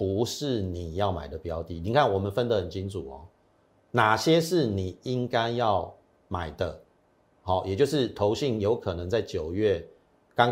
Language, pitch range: Chinese, 95-125 Hz